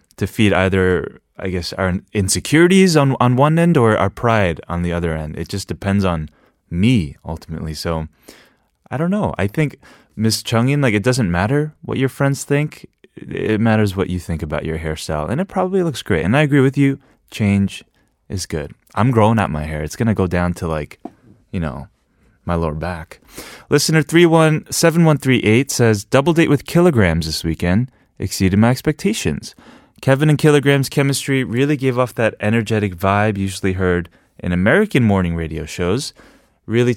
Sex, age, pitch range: male, 20-39, 90-135 Hz